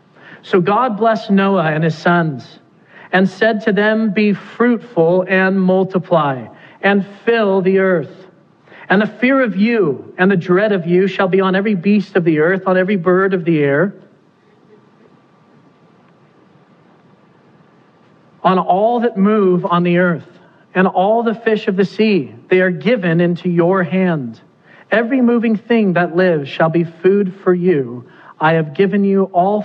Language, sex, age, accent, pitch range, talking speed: English, male, 40-59, American, 180-225 Hz, 160 wpm